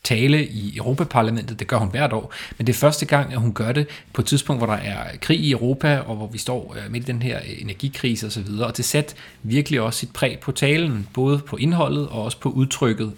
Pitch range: 110-135 Hz